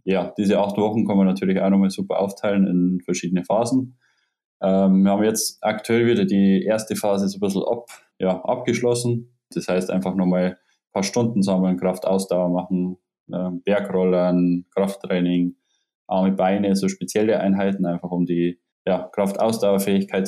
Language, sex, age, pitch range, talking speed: German, male, 10-29, 90-100 Hz, 150 wpm